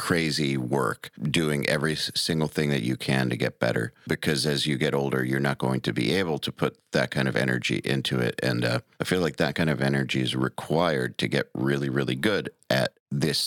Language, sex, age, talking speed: English, male, 40-59, 220 wpm